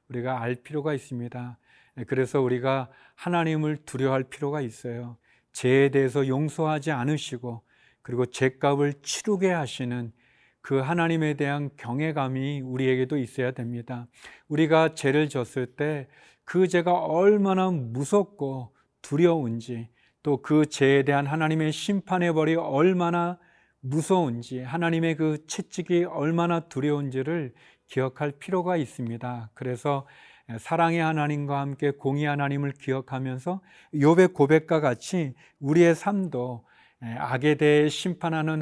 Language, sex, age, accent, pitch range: Korean, male, 40-59, native, 130-160 Hz